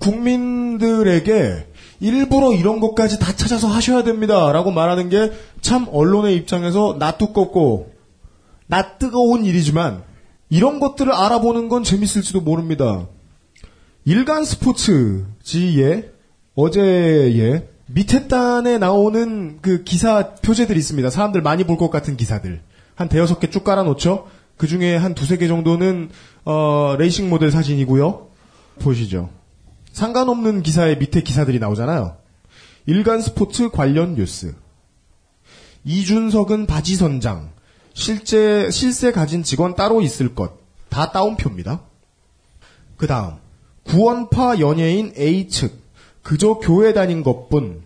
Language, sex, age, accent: Korean, male, 30-49, native